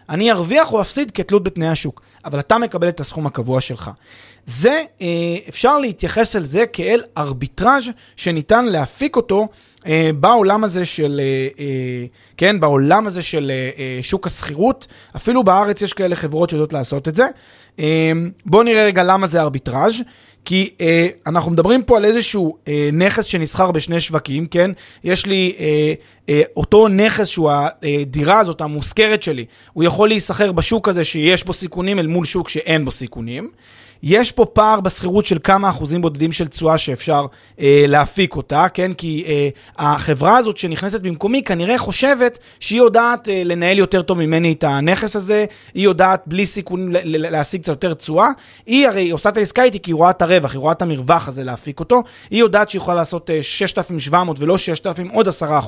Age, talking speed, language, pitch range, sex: 30-49, 165 wpm, Hebrew, 150-205 Hz, male